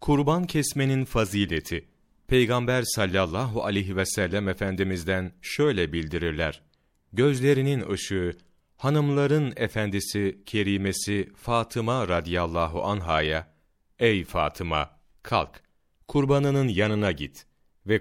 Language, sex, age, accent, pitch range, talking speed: Turkish, male, 40-59, native, 90-120 Hz, 85 wpm